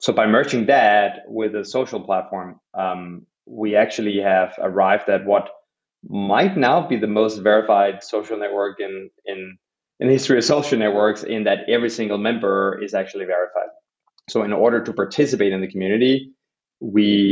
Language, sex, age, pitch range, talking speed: English, male, 20-39, 95-115 Hz, 165 wpm